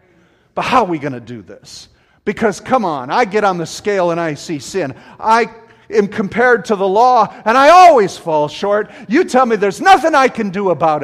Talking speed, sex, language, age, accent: 215 wpm, male, English, 50-69, American